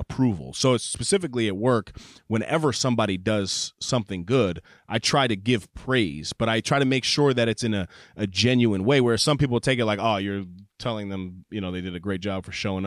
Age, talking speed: 30-49, 225 wpm